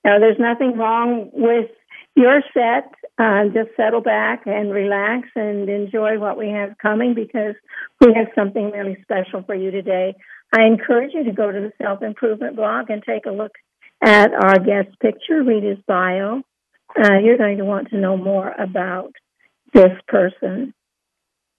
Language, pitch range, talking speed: English, 210-260 Hz, 165 wpm